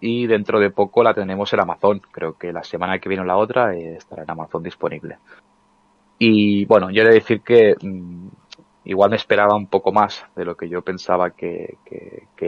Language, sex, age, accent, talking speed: Spanish, male, 20-39, Spanish, 200 wpm